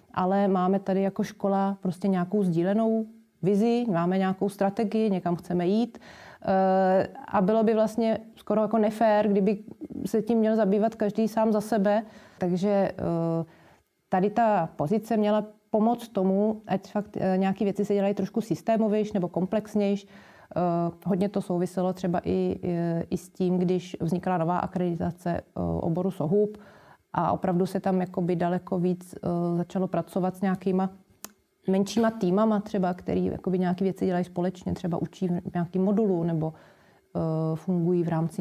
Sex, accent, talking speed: female, native, 140 wpm